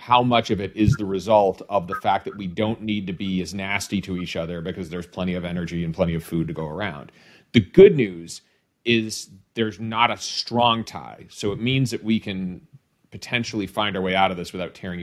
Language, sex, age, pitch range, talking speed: English, male, 30-49, 90-115 Hz, 230 wpm